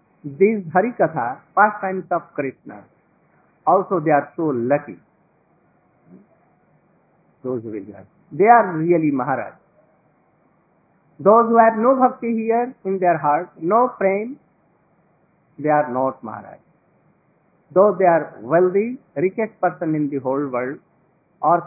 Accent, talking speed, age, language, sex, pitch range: native, 110 wpm, 50-69, Hindi, male, 145-205 Hz